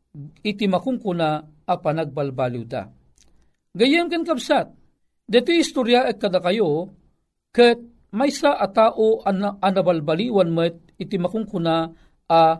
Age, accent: 50-69, native